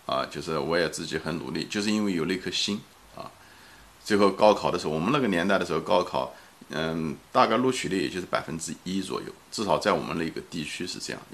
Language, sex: Chinese, male